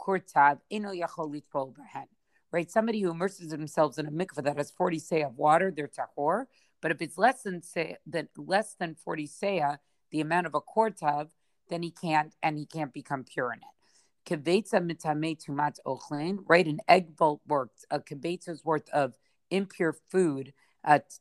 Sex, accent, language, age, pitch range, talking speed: female, American, English, 50-69, 150-180 Hz, 160 wpm